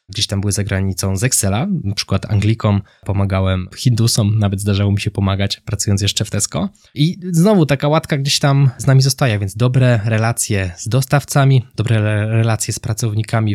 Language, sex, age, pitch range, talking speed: Polish, male, 20-39, 105-125 Hz, 175 wpm